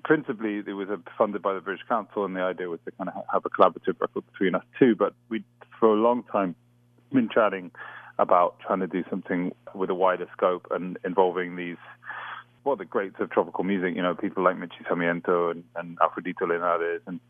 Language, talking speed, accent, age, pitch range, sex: English, 200 wpm, British, 30-49, 95-120 Hz, male